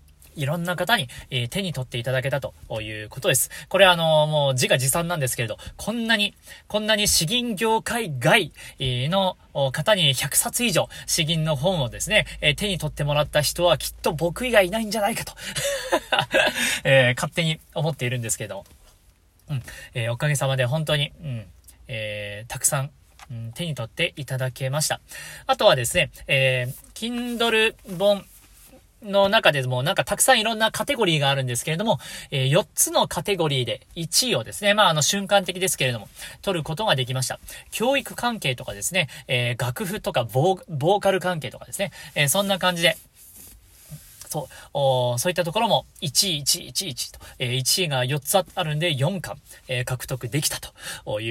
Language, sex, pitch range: Japanese, male, 130-195 Hz